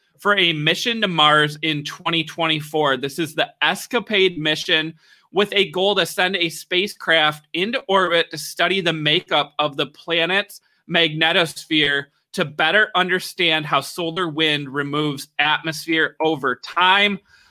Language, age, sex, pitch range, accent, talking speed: English, 20-39, male, 150-180 Hz, American, 135 wpm